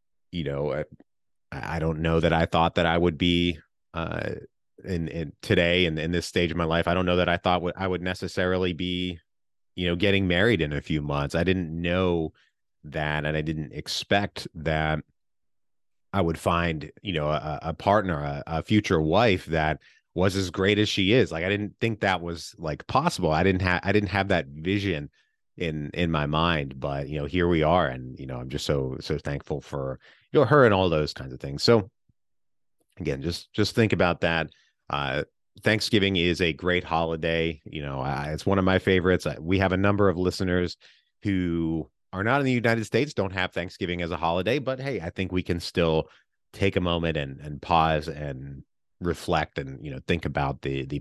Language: English